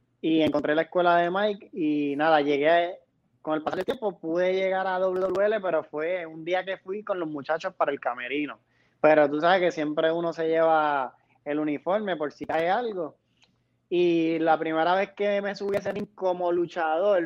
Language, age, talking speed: Spanish, 20-39, 190 wpm